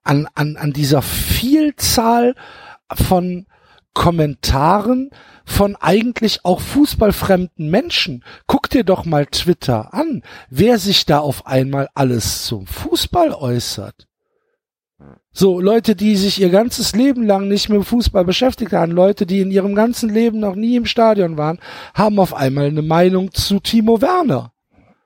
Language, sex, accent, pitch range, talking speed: German, male, German, 155-220 Hz, 145 wpm